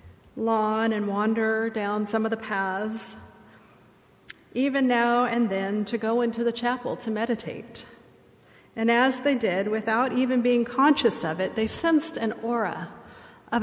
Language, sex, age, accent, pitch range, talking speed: English, female, 40-59, American, 225-260 Hz, 150 wpm